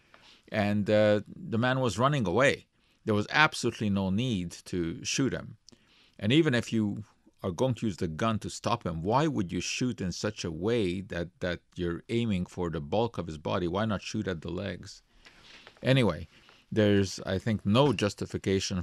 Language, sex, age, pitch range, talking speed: English, male, 50-69, 90-110 Hz, 185 wpm